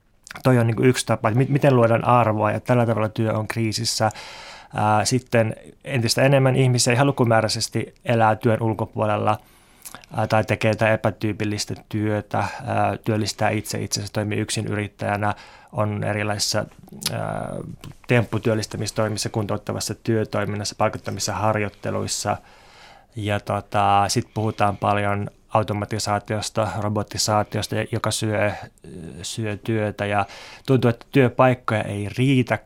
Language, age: Finnish, 20-39